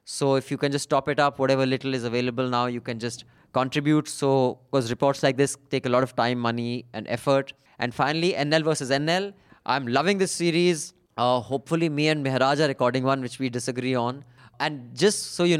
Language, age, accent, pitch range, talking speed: English, 20-39, Indian, 125-155 Hz, 210 wpm